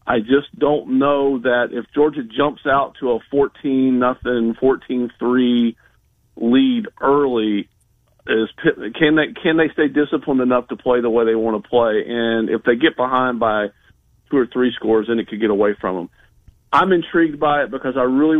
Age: 40-59